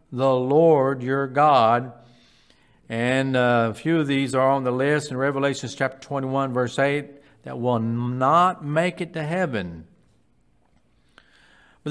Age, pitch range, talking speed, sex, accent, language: 60-79, 130-170 Hz, 140 wpm, male, American, English